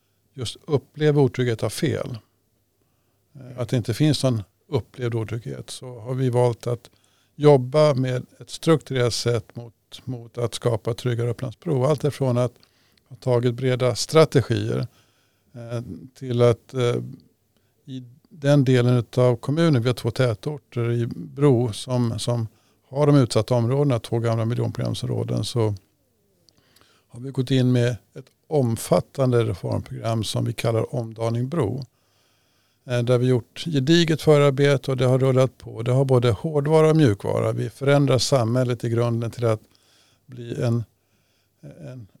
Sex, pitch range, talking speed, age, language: male, 115-130 Hz, 140 wpm, 50-69, Swedish